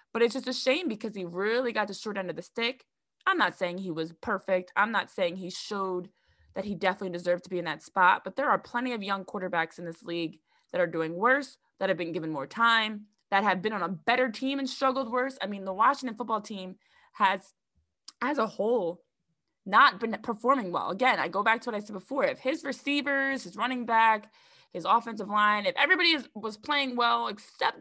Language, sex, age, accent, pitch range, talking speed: English, female, 20-39, American, 185-265 Hz, 220 wpm